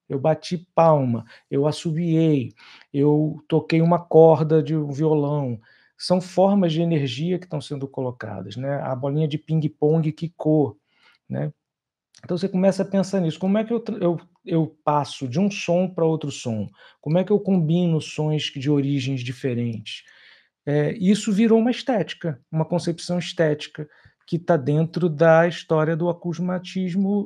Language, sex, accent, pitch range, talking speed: Portuguese, male, Brazilian, 140-185 Hz, 155 wpm